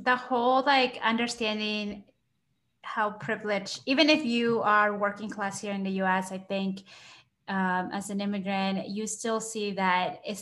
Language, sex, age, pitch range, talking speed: English, female, 20-39, 190-250 Hz, 155 wpm